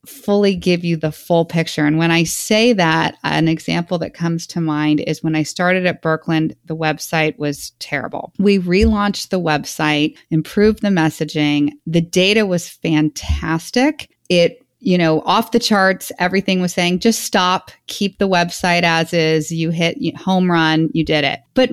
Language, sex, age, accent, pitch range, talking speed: English, female, 30-49, American, 160-195 Hz, 170 wpm